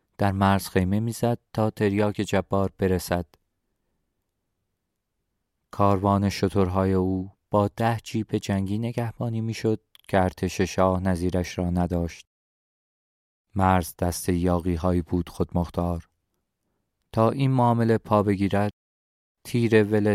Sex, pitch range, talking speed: male, 90-110 Hz, 110 wpm